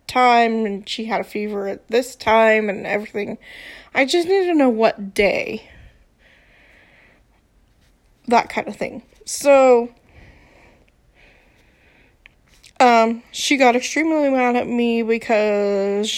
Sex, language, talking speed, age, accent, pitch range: female, English, 115 wpm, 20-39, American, 210-240 Hz